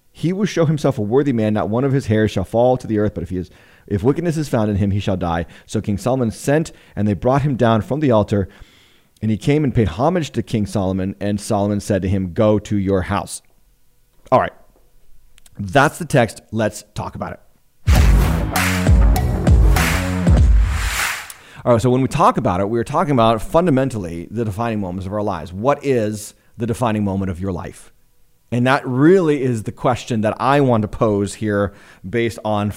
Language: English